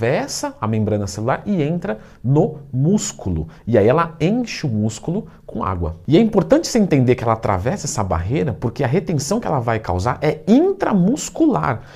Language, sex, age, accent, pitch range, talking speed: Portuguese, male, 50-69, Brazilian, 115-185 Hz, 175 wpm